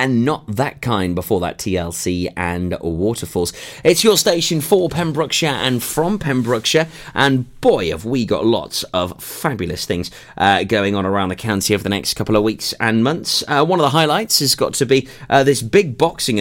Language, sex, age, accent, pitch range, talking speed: English, male, 30-49, British, 90-135 Hz, 195 wpm